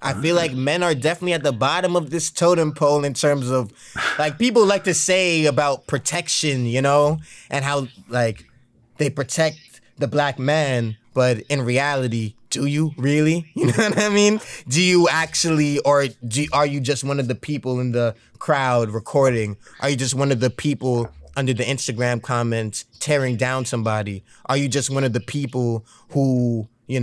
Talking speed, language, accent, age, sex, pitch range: 180 wpm, English, American, 20-39, male, 120-160 Hz